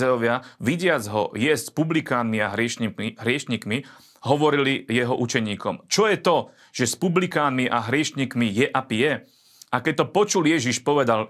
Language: Slovak